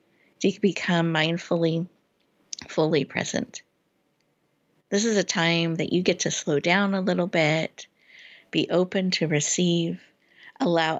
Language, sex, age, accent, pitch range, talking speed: English, female, 50-69, American, 155-180 Hz, 125 wpm